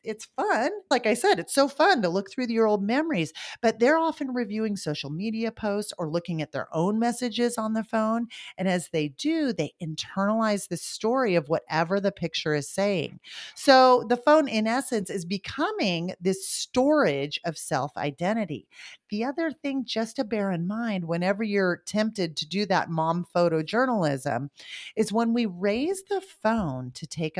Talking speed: 175 wpm